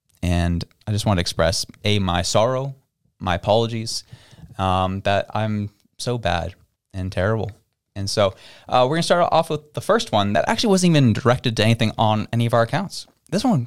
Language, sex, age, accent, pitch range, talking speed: English, male, 20-39, American, 110-150 Hz, 195 wpm